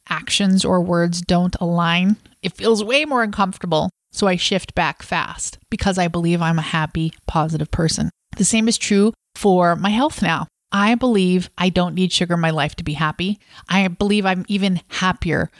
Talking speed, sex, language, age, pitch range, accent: 185 wpm, female, English, 30-49, 170-210 Hz, American